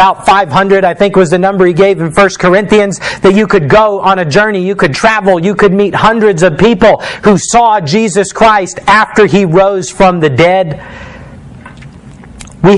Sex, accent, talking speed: male, American, 185 wpm